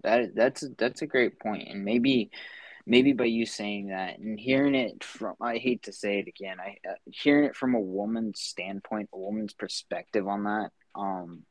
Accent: American